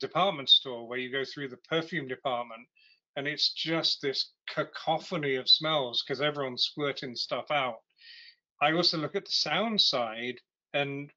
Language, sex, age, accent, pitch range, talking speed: English, male, 40-59, British, 130-160 Hz, 155 wpm